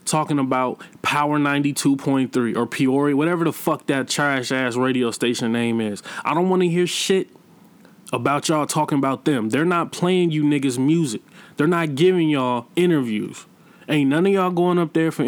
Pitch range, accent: 125-165 Hz, American